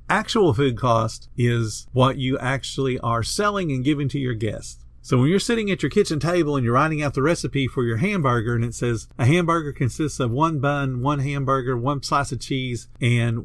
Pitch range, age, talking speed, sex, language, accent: 120-155 Hz, 50-69, 210 wpm, male, English, American